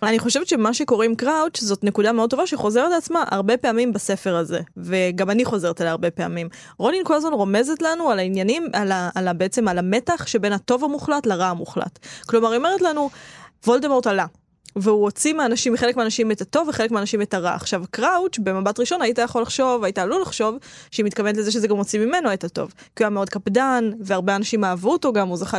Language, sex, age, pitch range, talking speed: Hebrew, female, 20-39, 195-240 Hz, 210 wpm